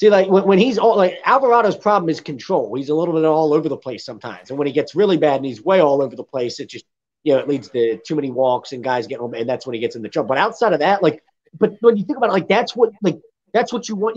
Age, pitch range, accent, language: 30-49, 160-205 Hz, American, English